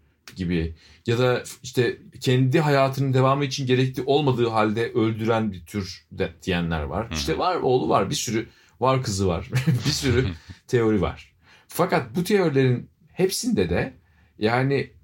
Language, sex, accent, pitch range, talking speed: Turkish, male, native, 100-140 Hz, 145 wpm